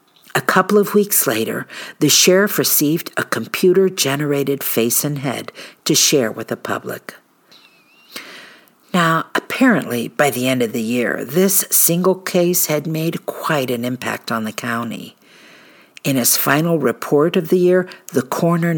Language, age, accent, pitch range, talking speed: English, 50-69, American, 130-185 Hz, 145 wpm